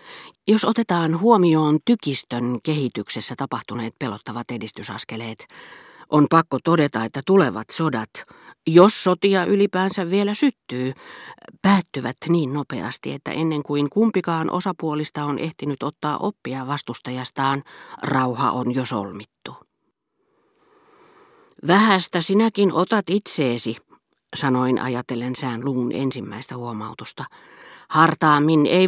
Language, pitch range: Finnish, 125-175 Hz